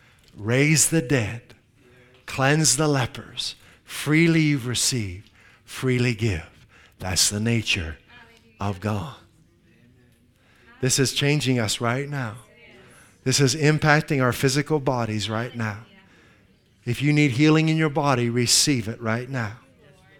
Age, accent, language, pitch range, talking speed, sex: 50-69, American, English, 115-145 Hz, 120 wpm, male